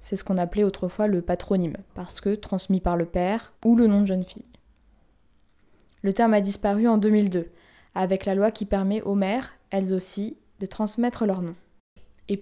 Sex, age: female, 20-39